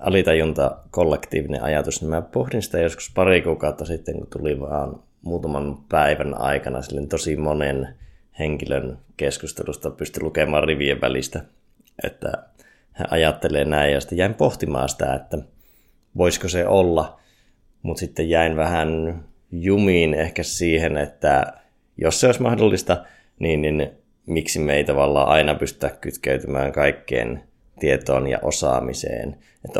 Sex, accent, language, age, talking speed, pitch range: male, native, Finnish, 20-39, 130 wpm, 70-80 Hz